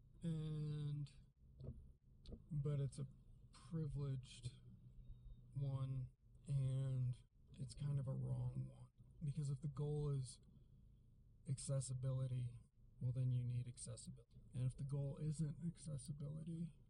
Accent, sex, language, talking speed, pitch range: American, male, English, 105 wpm, 120-140 Hz